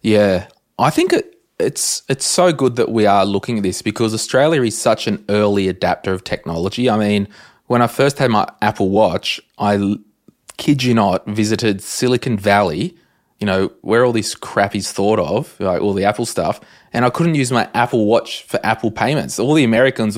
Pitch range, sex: 95-115 Hz, male